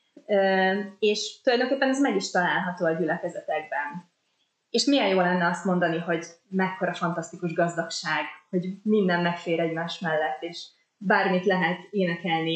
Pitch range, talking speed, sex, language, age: 170-205 Hz, 130 wpm, female, Hungarian, 20-39